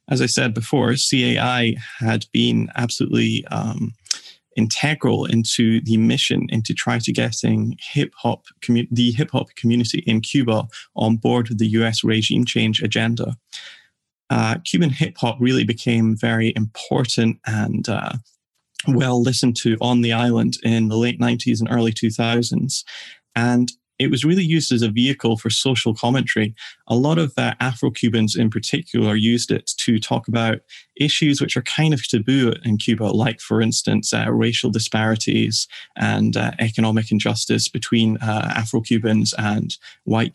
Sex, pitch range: male, 110-125 Hz